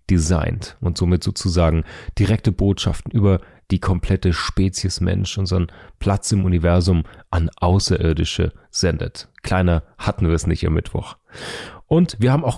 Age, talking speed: 30-49, 140 wpm